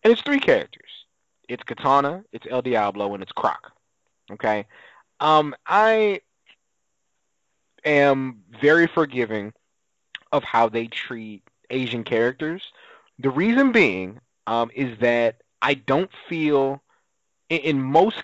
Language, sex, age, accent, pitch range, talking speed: English, male, 20-39, American, 115-145 Hz, 120 wpm